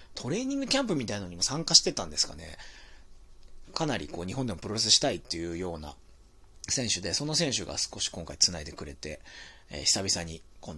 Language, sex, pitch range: Japanese, male, 90-135 Hz